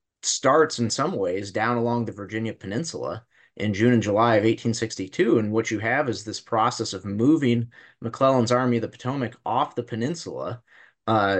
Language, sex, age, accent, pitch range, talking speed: English, male, 20-39, American, 110-125 Hz, 175 wpm